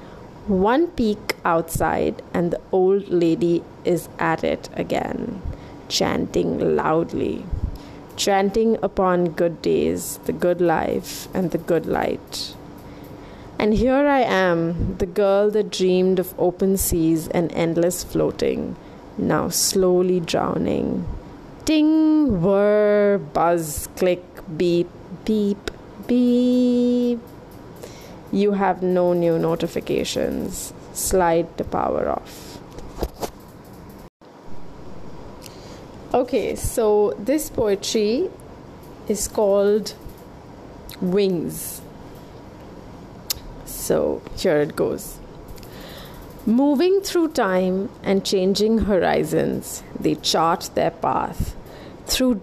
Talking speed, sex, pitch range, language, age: 90 wpm, female, 175-215 Hz, English, 30-49